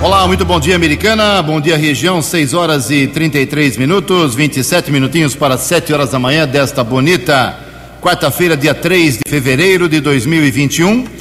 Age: 60-79